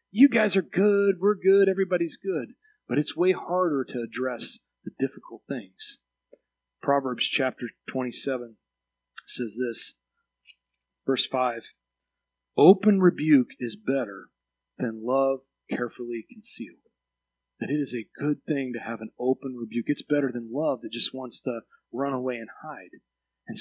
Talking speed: 140 wpm